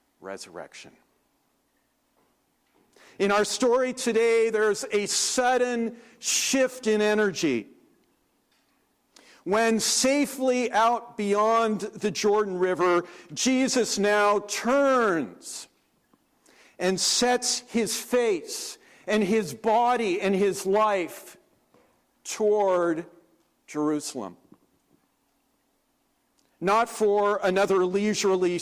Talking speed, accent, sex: 80 wpm, American, male